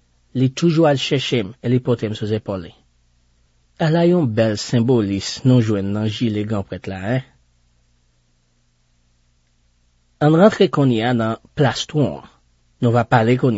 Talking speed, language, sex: 140 wpm, French, male